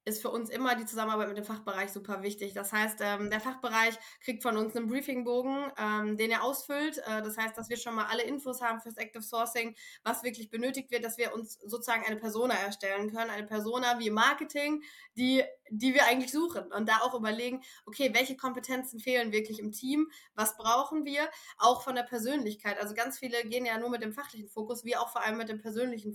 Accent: German